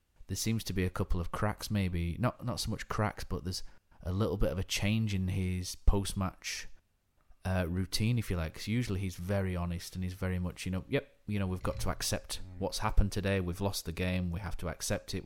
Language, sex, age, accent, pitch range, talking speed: English, male, 30-49, British, 90-105 Hz, 235 wpm